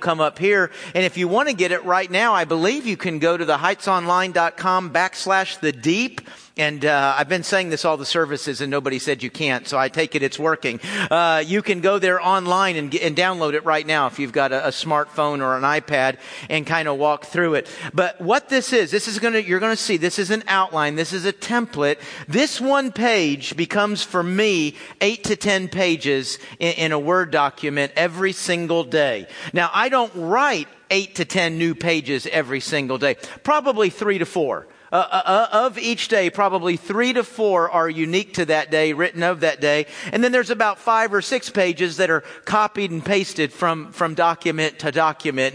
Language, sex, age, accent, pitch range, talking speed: English, male, 50-69, American, 155-200 Hz, 210 wpm